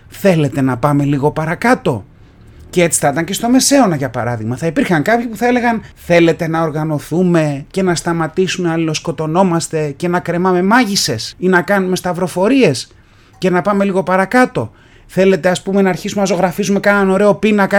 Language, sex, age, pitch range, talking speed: Greek, male, 30-49, 150-220 Hz, 170 wpm